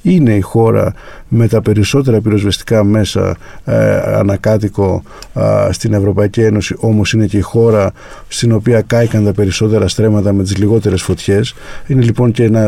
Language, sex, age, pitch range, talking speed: Greek, male, 50-69, 100-115 Hz, 155 wpm